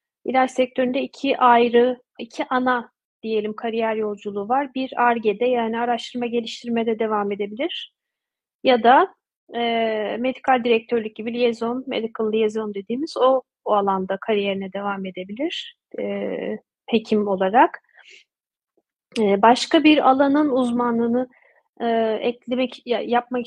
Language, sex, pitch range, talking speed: Turkish, female, 225-265 Hz, 115 wpm